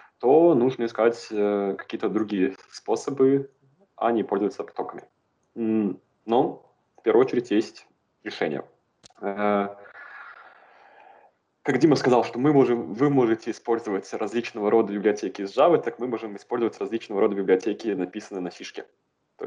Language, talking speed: Russian, 120 wpm